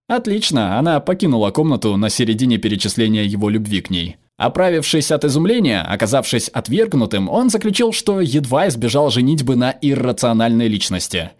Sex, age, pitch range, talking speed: male, 20-39, 115-160 Hz, 130 wpm